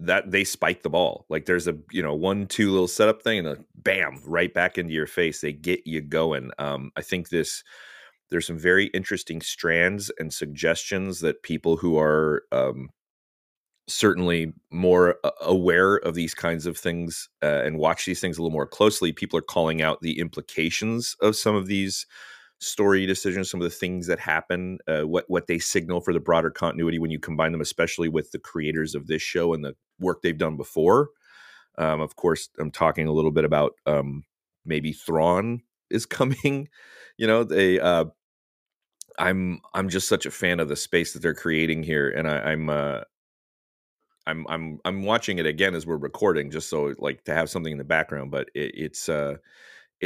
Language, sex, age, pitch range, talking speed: English, male, 30-49, 80-95 Hz, 190 wpm